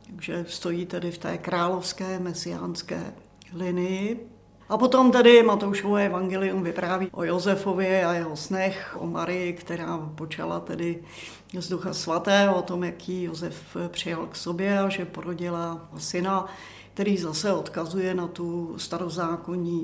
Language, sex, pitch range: Czech, female, 170-195 Hz